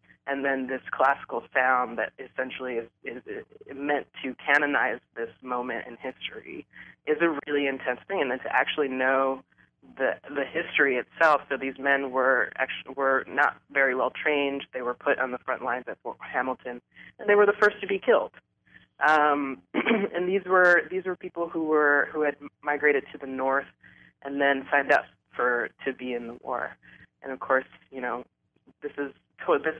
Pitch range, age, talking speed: 125-145 Hz, 20-39, 185 wpm